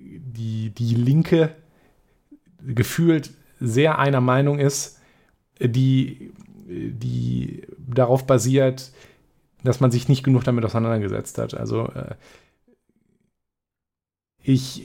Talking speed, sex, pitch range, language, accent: 90 wpm, male, 115-140 Hz, German, German